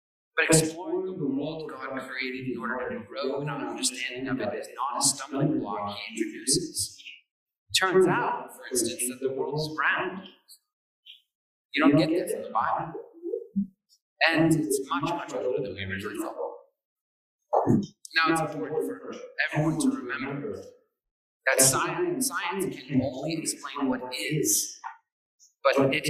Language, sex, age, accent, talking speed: English, male, 40-59, American, 150 wpm